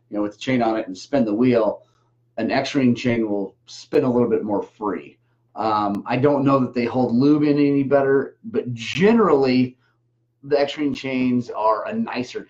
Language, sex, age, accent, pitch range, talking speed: English, male, 30-49, American, 120-145 Hz, 190 wpm